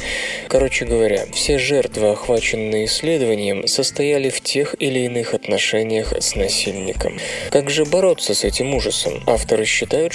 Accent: native